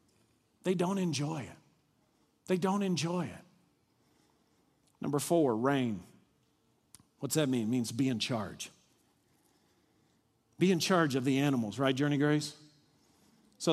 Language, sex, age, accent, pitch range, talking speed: English, male, 50-69, American, 125-185 Hz, 125 wpm